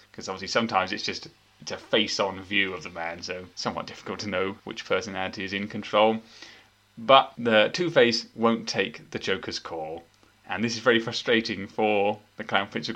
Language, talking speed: English, 185 wpm